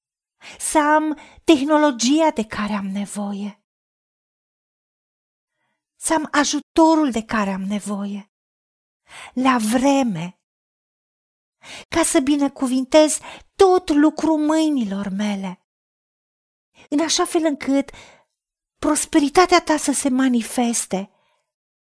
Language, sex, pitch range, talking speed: Romanian, female, 215-305 Hz, 90 wpm